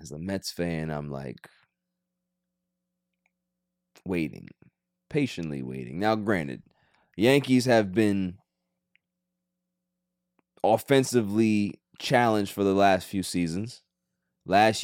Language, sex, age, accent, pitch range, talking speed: English, male, 20-39, American, 90-115 Hz, 90 wpm